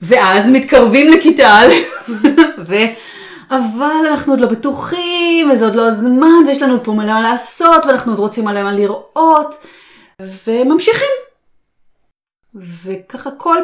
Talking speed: 125 wpm